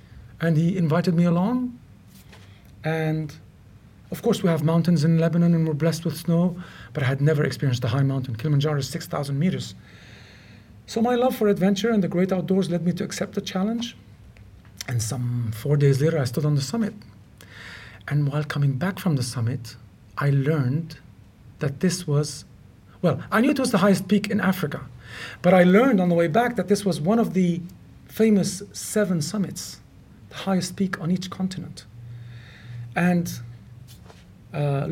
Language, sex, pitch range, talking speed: English, male, 120-185 Hz, 170 wpm